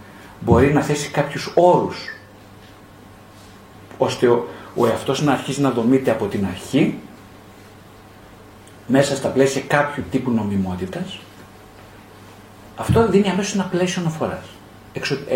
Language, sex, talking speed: Greek, male, 110 wpm